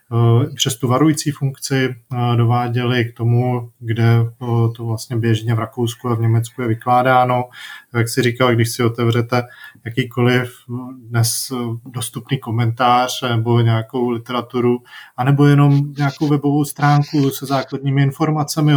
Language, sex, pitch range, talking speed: Czech, male, 115-130 Hz, 120 wpm